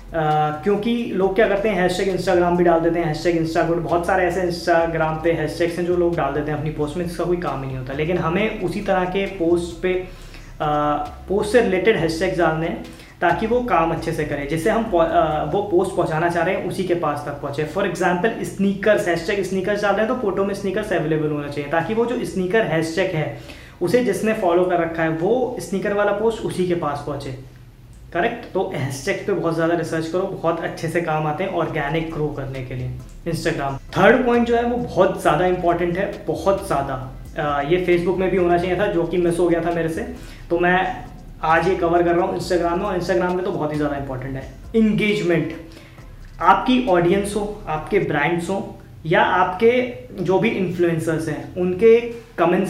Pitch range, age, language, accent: 160-190 Hz, 20-39, Hindi, native